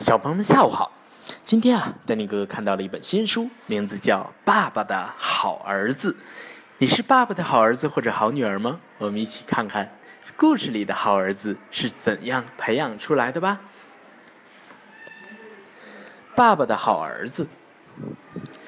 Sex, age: male, 20-39